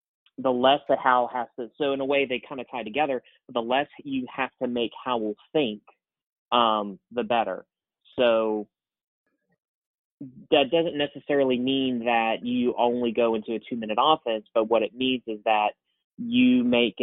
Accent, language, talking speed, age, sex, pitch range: American, English, 175 wpm, 30-49, male, 105-120 Hz